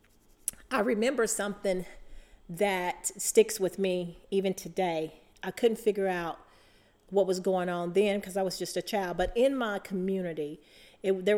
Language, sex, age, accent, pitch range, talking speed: English, female, 40-59, American, 170-195 Hz, 155 wpm